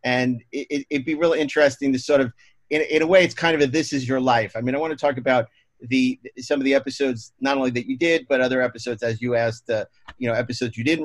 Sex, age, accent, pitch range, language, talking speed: male, 30-49, American, 115-140 Hz, English, 270 wpm